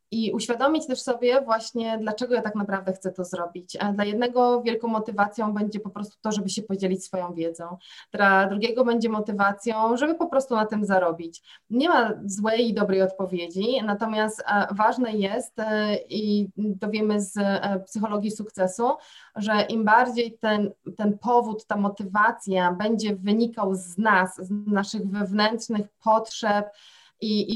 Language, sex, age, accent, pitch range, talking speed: Polish, female, 20-39, native, 205-230 Hz, 145 wpm